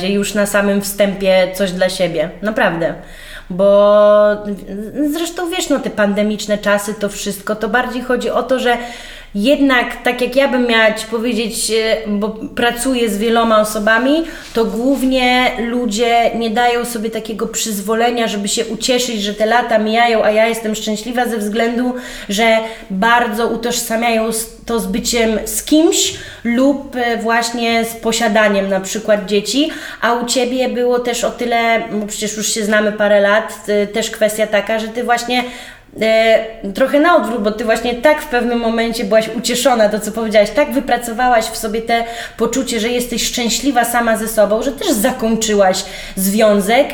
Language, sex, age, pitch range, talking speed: Polish, female, 20-39, 215-255 Hz, 155 wpm